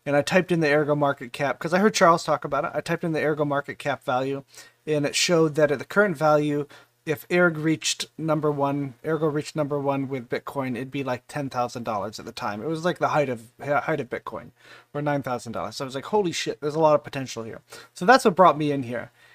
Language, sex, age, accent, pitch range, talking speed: English, male, 30-49, American, 135-160 Hz, 255 wpm